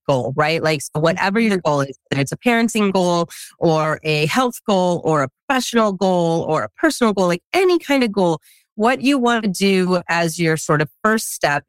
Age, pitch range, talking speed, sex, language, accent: 30-49, 150-190 Hz, 210 wpm, female, English, American